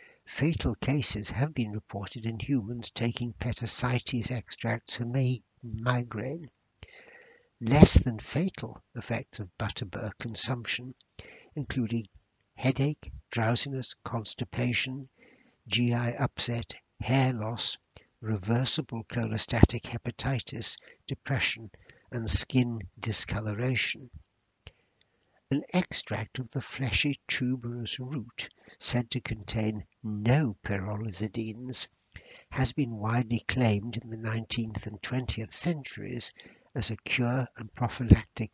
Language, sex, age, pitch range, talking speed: English, male, 60-79, 110-130 Hz, 95 wpm